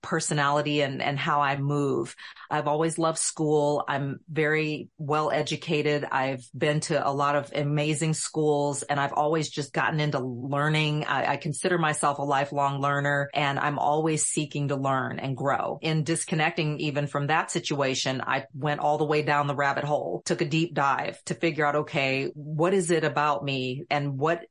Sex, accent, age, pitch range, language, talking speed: female, American, 40-59, 145-165 Hz, English, 180 wpm